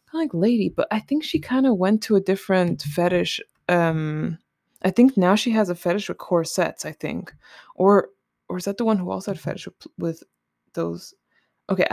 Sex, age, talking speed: female, 20-39, 190 wpm